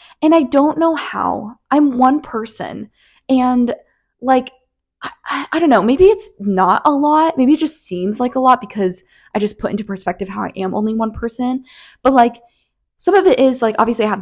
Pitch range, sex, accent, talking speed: 195-265 Hz, female, American, 205 wpm